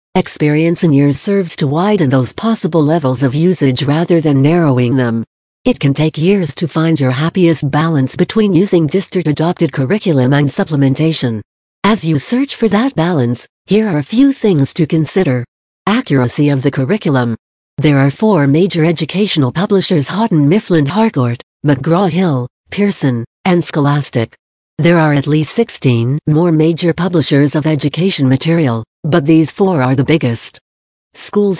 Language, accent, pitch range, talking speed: English, American, 135-185 Hz, 150 wpm